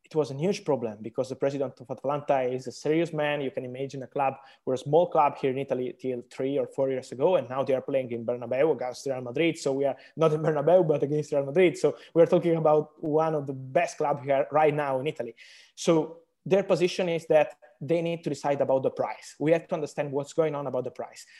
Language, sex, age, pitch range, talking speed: English, male, 20-39, 135-160 Hz, 250 wpm